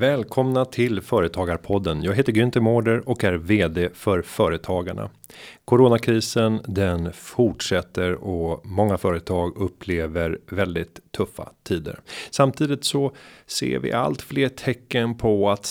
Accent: native